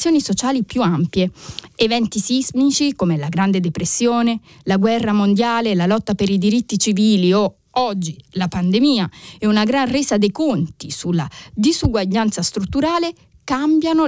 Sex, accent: female, native